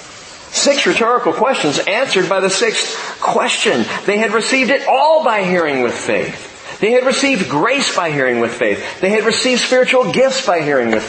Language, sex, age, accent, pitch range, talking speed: English, male, 40-59, American, 180-255 Hz, 180 wpm